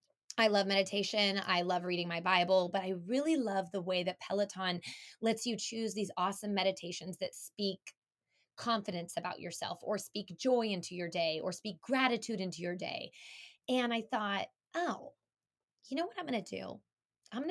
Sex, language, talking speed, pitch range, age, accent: female, English, 180 wpm, 180-230 Hz, 20-39, American